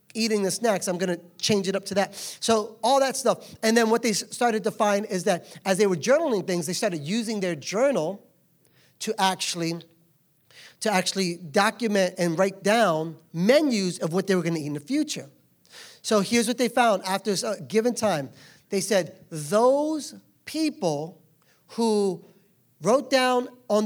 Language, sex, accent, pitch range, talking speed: English, male, American, 160-225 Hz, 175 wpm